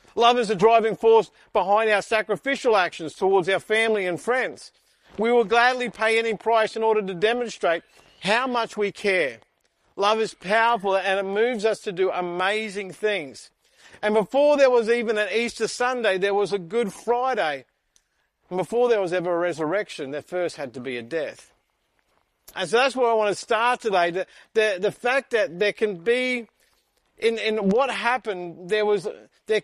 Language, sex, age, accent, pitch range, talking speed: English, male, 50-69, Australian, 195-235 Hz, 180 wpm